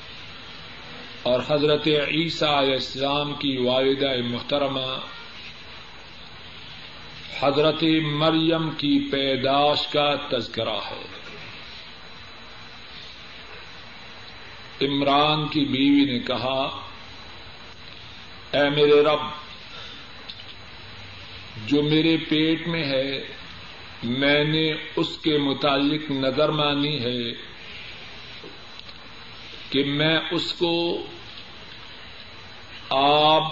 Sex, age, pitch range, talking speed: male, 50-69, 115-155 Hz, 70 wpm